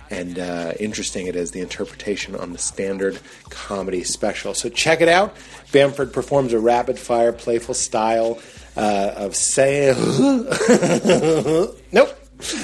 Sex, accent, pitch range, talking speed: male, American, 110-135 Hz, 130 wpm